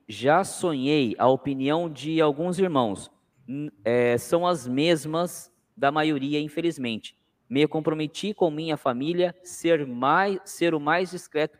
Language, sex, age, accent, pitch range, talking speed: Portuguese, male, 20-39, Brazilian, 125-170 Hz, 130 wpm